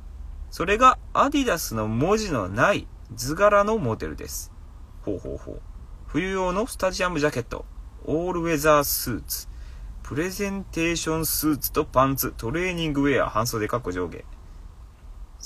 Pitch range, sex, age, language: 85-135 Hz, male, 30-49, Japanese